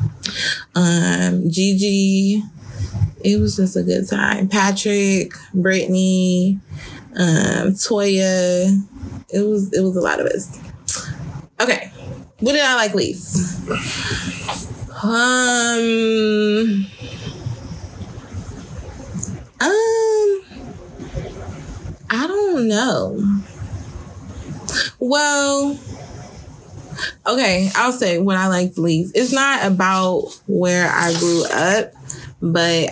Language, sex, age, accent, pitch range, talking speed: English, female, 20-39, American, 160-205 Hz, 85 wpm